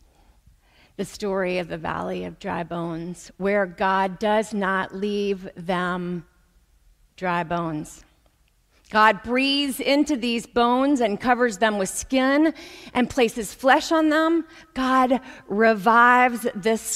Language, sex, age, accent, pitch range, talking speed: English, female, 40-59, American, 170-240 Hz, 120 wpm